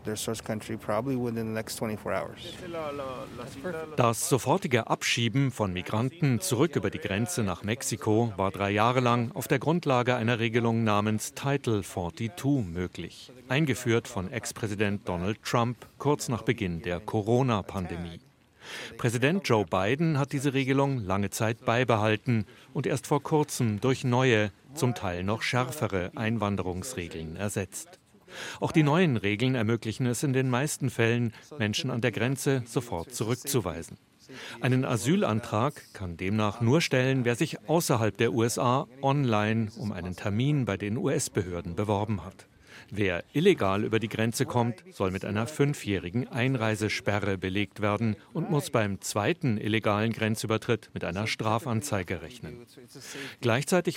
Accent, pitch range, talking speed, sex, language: German, 105-130 Hz, 130 wpm, male, German